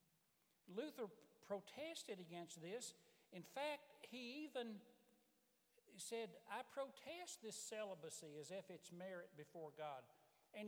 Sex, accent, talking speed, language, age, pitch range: male, American, 110 wpm, English, 60-79, 165-245 Hz